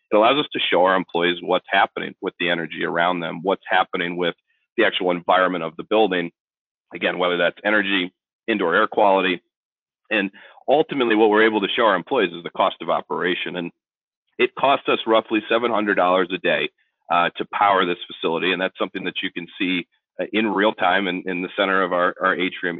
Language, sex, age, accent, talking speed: English, male, 40-59, American, 200 wpm